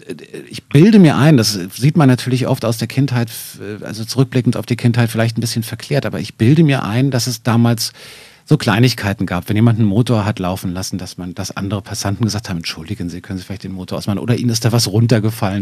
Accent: German